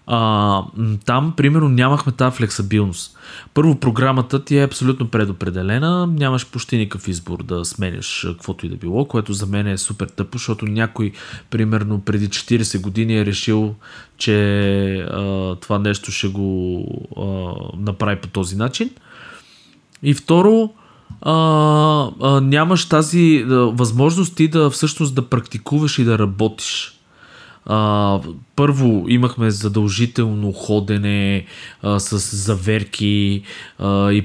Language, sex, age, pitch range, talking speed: Bulgarian, male, 20-39, 100-135 Hz, 115 wpm